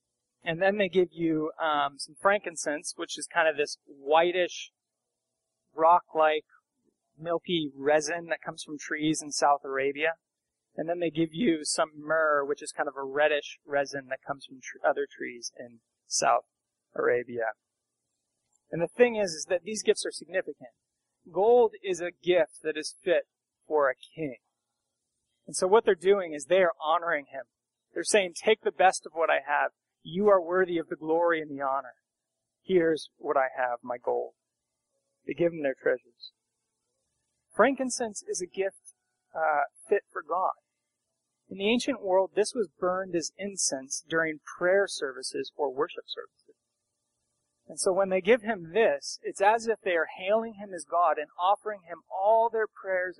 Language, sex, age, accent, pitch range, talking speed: English, male, 20-39, American, 150-205 Hz, 170 wpm